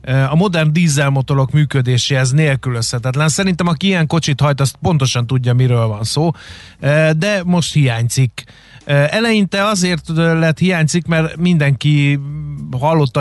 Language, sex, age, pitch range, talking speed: Hungarian, male, 30-49, 135-160 Hz, 120 wpm